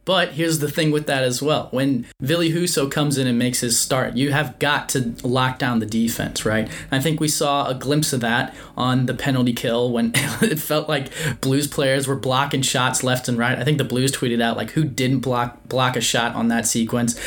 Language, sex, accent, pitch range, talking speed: English, male, American, 120-150 Hz, 235 wpm